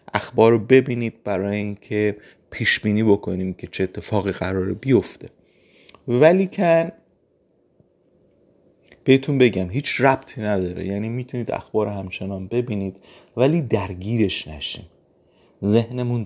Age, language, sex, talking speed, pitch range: 30-49, English, male, 105 wpm, 95-120 Hz